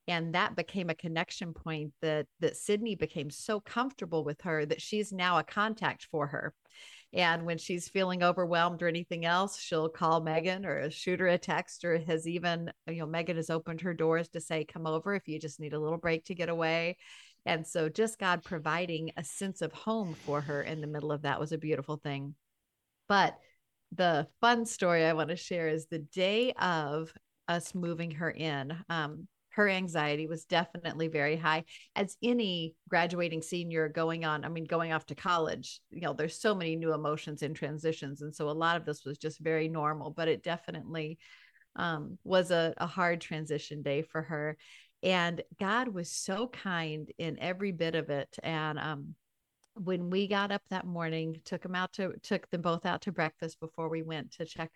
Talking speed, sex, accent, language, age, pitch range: 195 wpm, female, American, English, 50-69, 155-180 Hz